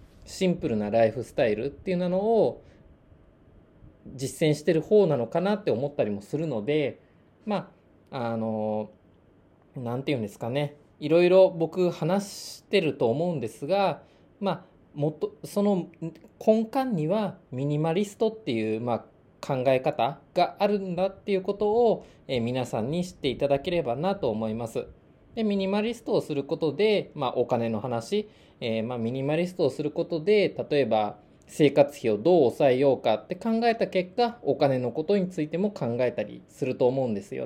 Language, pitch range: Japanese, 130-200 Hz